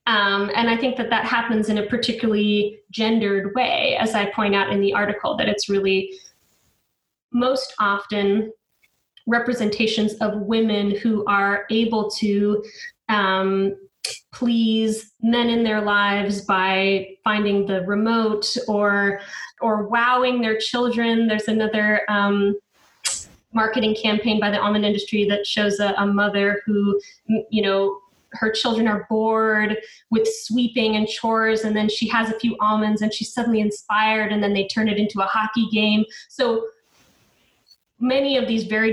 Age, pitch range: 20-39, 205-230 Hz